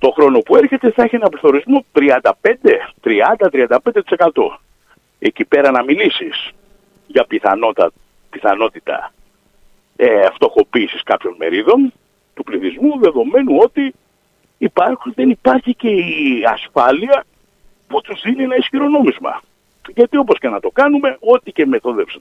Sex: male